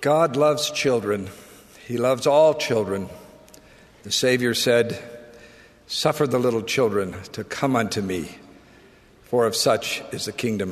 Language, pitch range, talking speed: English, 120-150 Hz, 135 wpm